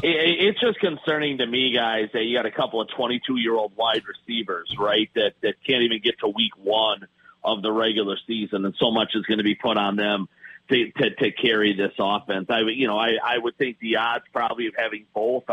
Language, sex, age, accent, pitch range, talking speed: English, male, 40-59, American, 110-130 Hz, 220 wpm